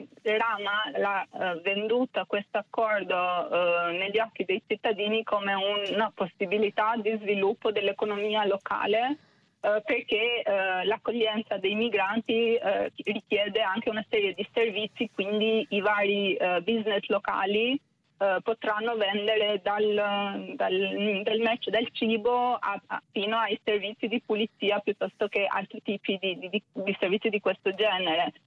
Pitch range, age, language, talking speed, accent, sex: 200-225 Hz, 20-39, Italian, 135 wpm, native, female